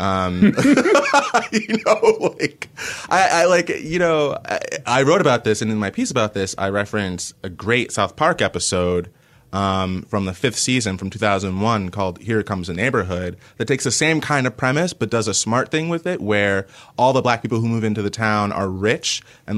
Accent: American